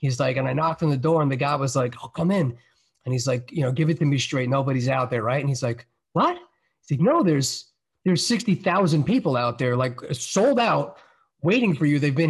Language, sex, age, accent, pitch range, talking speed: English, male, 30-49, American, 135-180 Hz, 250 wpm